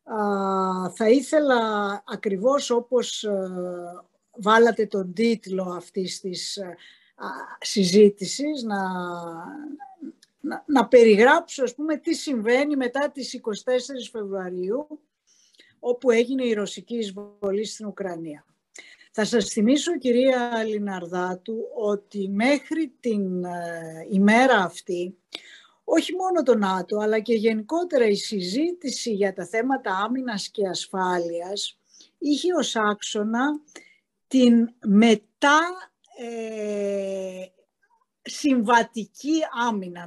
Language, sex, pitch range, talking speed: Greek, female, 195-250 Hz, 95 wpm